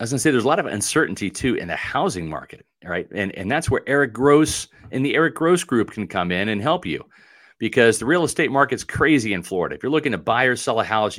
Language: English